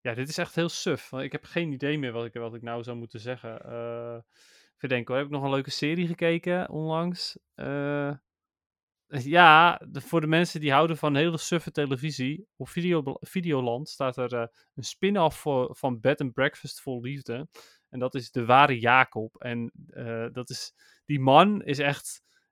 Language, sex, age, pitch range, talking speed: Dutch, male, 30-49, 120-155 Hz, 190 wpm